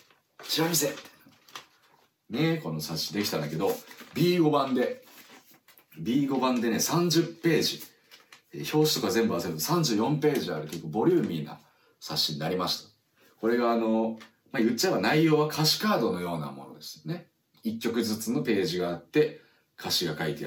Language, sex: Japanese, male